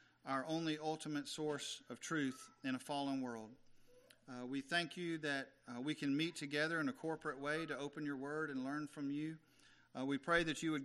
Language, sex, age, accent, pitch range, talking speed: English, male, 40-59, American, 135-165 Hz, 210 wpm